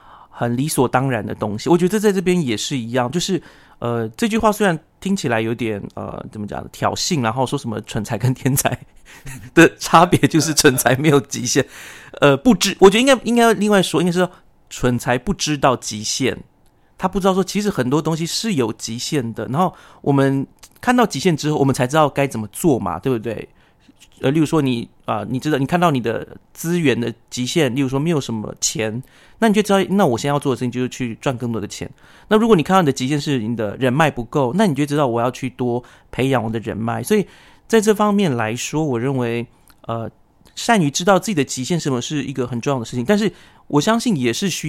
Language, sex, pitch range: Chinese, male, 120-175 Hz